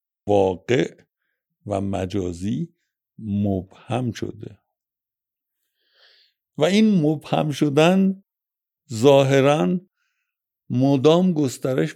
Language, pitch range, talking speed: Persian, 110-175 Hz, 60 wpm